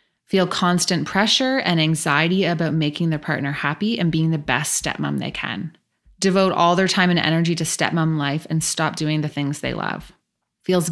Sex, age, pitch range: female, 20-39, 155-190 Hz